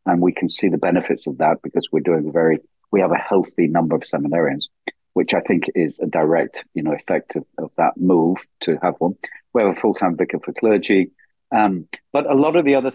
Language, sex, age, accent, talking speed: English, male, 40-59, British, 230 wpm